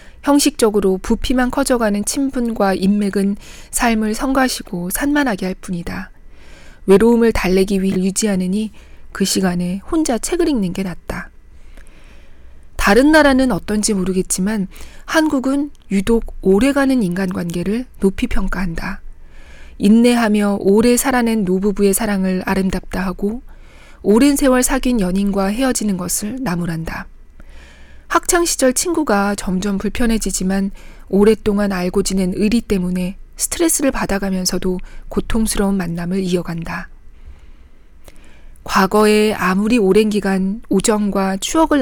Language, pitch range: Korean, 185-230 Hz